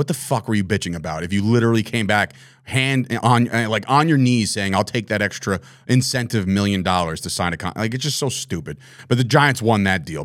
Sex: male